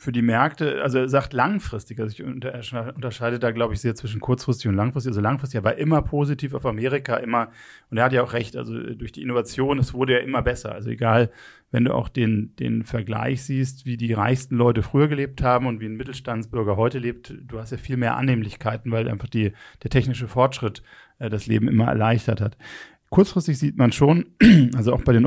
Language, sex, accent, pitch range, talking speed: German, male, German, 110-135 Hz, 215 wpm